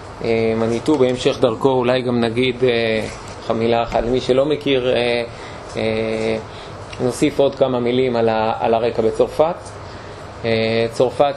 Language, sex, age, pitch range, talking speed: Hebrew, male, 20-39, 115-130 Hz, 105 wpm